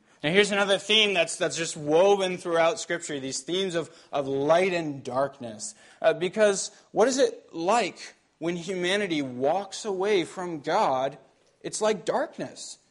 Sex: male